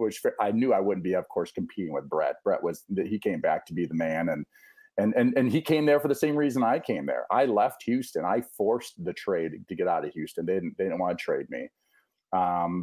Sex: male